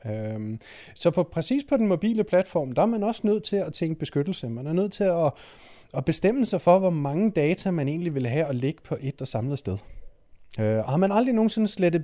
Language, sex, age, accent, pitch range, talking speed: Danish, male, 30-49, native, 125-180 Hz, 225 wpm